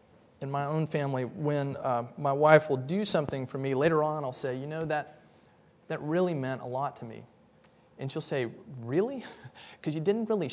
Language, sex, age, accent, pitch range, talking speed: English, male, 30-49, American, 120-165 Hz, 200 wpm